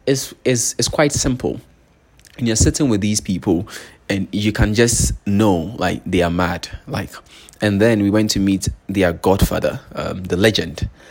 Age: 20-39